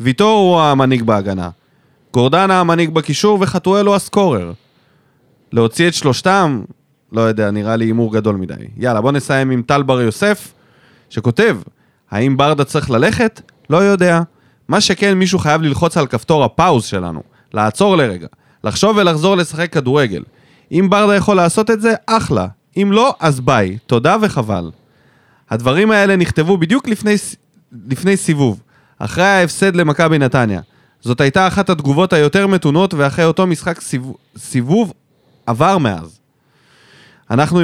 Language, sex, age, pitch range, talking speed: Hebrew, male, 30-49, 125-175 Hz, 140 wpm